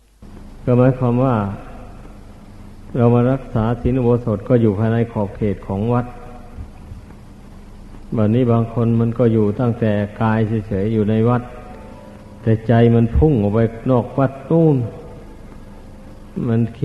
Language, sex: Thai, male